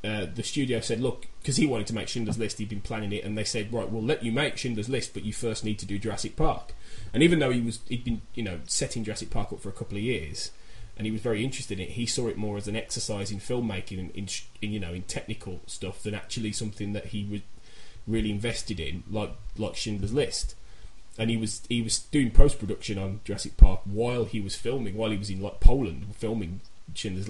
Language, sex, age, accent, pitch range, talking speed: English, male, 20-39, British, 105-120 Hz, 250 wpm